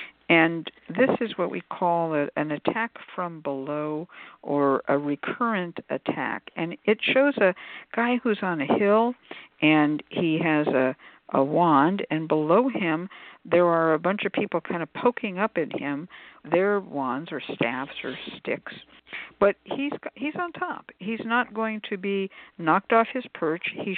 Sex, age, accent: female, 60-79, American